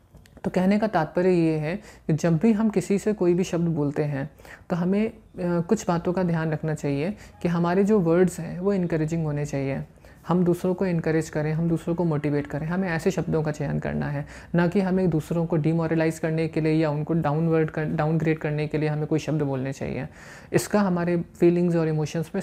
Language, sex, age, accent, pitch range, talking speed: Hindi, male, 20-39, native, 155-180 Hz, 215 wpm